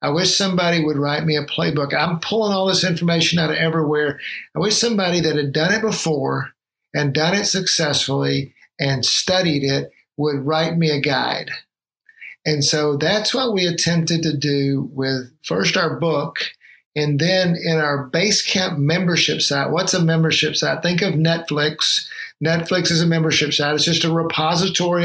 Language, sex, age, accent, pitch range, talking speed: English, male, 50-69, American, 150-185 Hz, 170 wpm